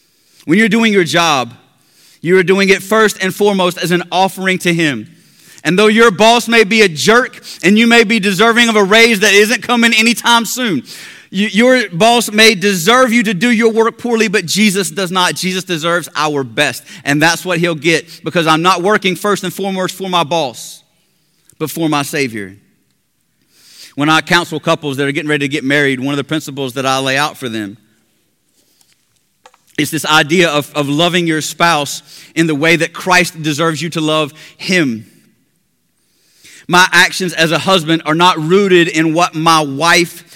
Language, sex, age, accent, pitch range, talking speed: English, male, 30-49, American, 145-195 Hz, 185 wpm